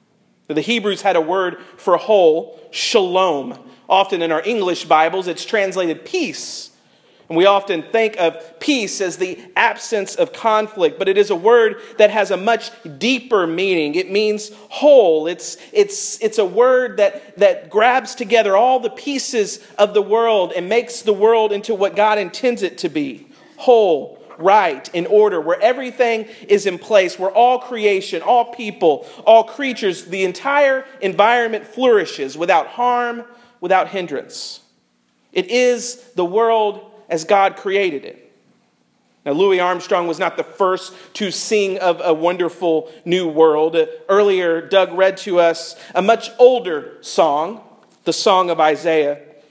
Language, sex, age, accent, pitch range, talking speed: English, male, 40-59, American, 185-245 Hz, 150 wpm